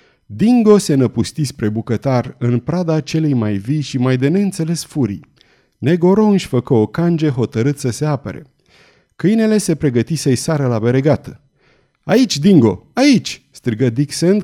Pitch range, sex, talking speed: 115-165 Hz, male, 145 wpm